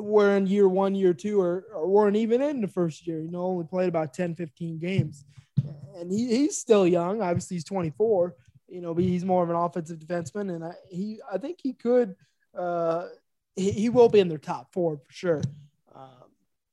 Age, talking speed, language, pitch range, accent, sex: 20-39, 210 wpm, English, 170-200 Hz, American, male